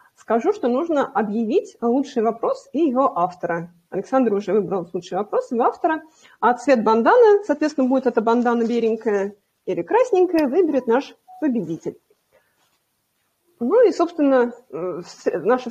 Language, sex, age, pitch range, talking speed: Russian, female, 30-49, 230-305 Hz, 125 wpm